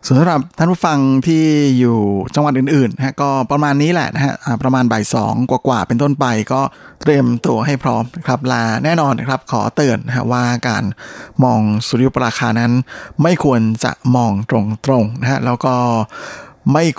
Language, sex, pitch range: Thai, male, 115-135 Hz